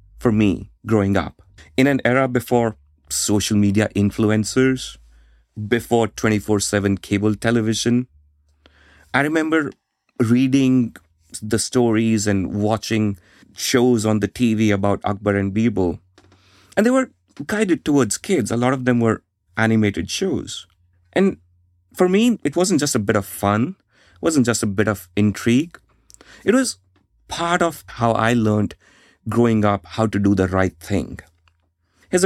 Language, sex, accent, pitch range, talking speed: English, male, Indian, 95-120 Hz, 140 wpm